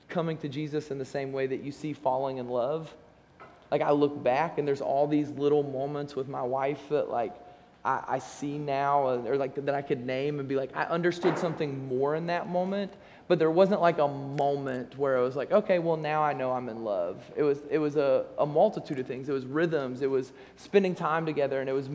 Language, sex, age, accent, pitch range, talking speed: English, male, 20-39, American, 130-160 Hz, 235 wpm